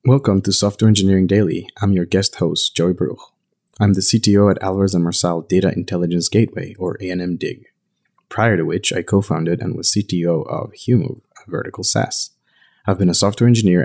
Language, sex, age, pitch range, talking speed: English, male, 30-49, 90-110 Hz, 180 wpm